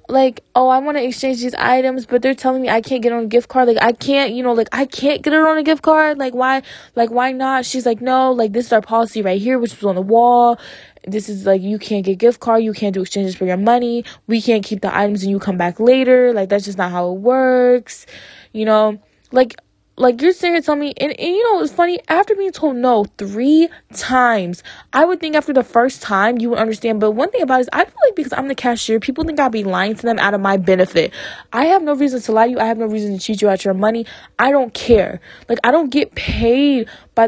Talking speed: 270 wpm